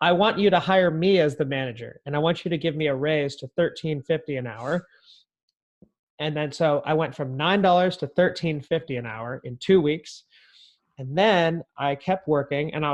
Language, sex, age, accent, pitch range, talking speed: English, male, 30-49, American, 140-170 Hz, 200 wpm